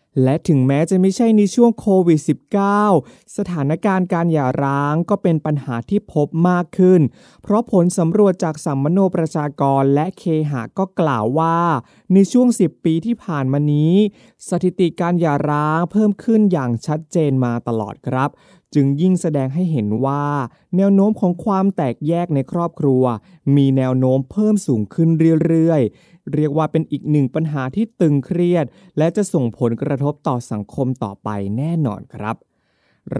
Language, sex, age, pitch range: Thai, male, 20-39, 125-175 Hz